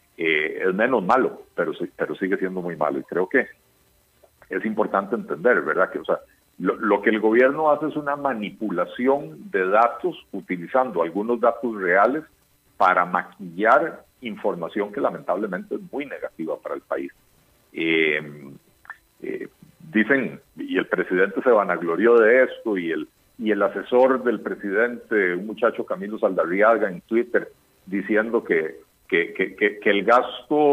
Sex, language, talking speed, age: male, Spanish, 150 wpm, 50-69